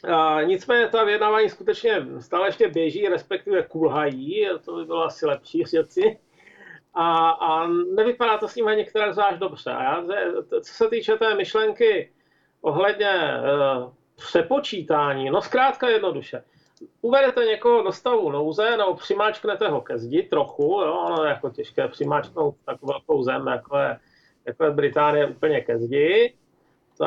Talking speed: 155 wpm